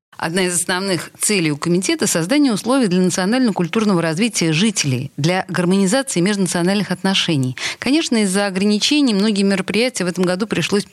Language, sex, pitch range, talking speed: Russian, female, 155-210 Hz, 145 wpm